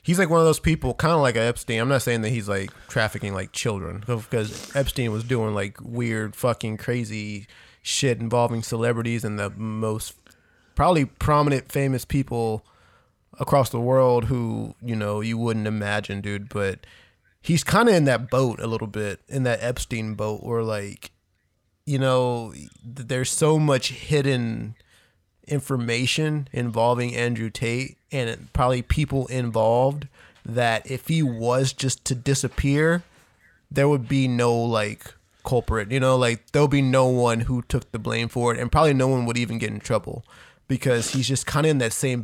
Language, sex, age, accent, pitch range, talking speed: English, male, 20-39, American, 110-130 Hz, 170 wpm